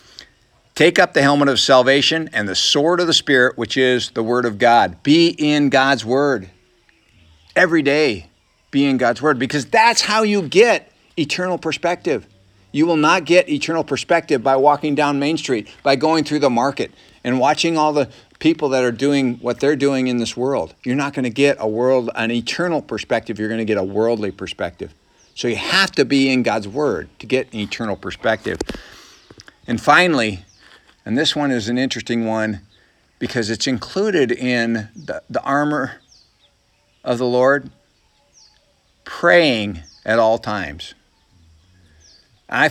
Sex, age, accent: male, 50-69, American